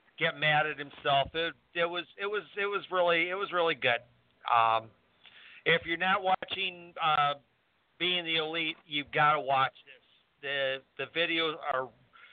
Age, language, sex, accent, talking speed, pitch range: 50-69, English, male, American, 165 wpm, 140-180 Hz